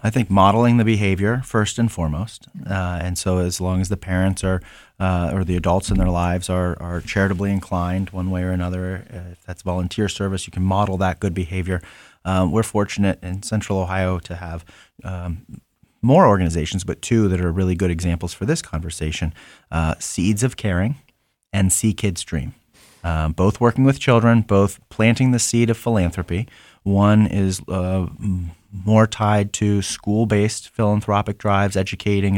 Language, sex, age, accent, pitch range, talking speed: English, male, 30-49, American, 90-110 Hz, 170 wpm